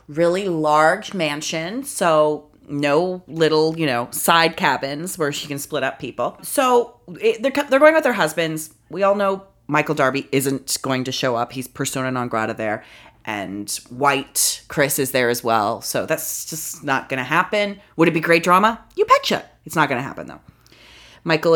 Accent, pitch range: American, 135-195 Hz